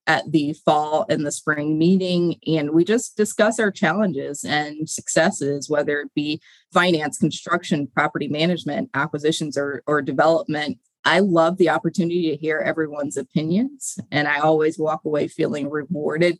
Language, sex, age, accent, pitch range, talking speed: English, female, 30-49, American, 150-180 Hz, 150 wpm